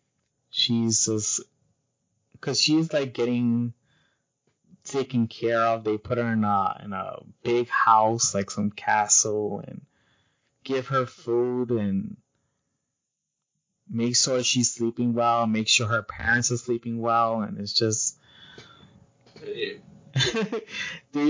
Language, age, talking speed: English, 20-39, 120 wpm